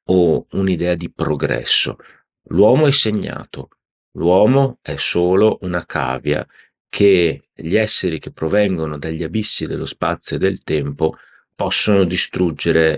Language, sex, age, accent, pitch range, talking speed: Italian, male, 40-59, native, 75-95 Hz, 120 wpm